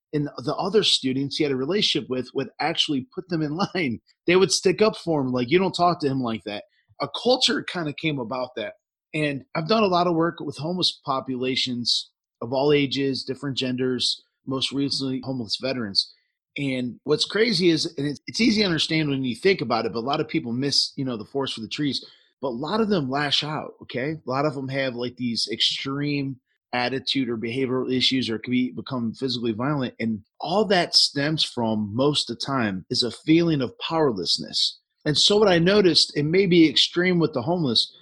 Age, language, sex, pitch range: 30-49, English, male, 125-155 Hz